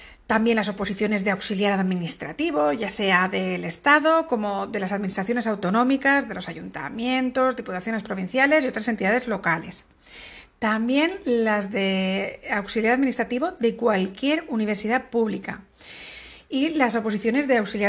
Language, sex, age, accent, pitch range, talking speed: Spanish, female, 50-69, Spanish, 200-265 Hz, 130 wpm